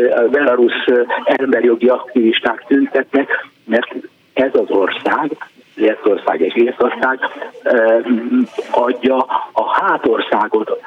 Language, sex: Hungarian, male